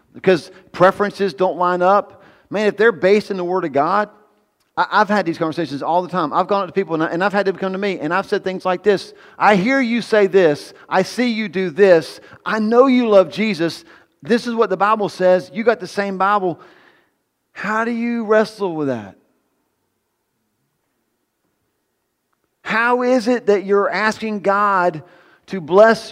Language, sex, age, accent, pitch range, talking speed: English, male, 40-59, American, 160-210 Hz, 185 wpm